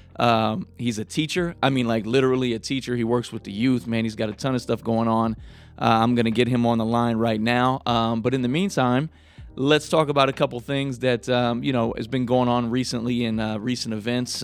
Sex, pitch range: male, 110-125 Hz